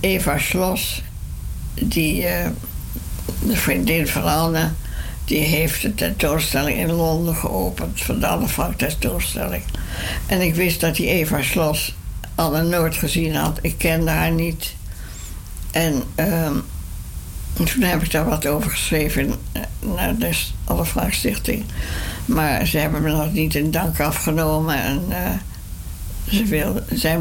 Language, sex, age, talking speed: Dutch, female, 60-79, 130 wpm